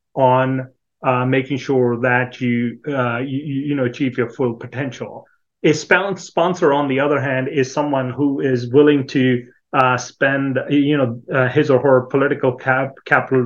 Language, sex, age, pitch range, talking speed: English, male, 30-49, 125-150 Hz, 145 wpm